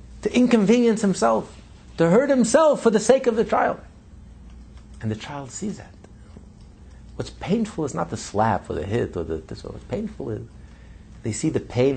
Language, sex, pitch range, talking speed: English, male, 105-145 Hz, 180 wpm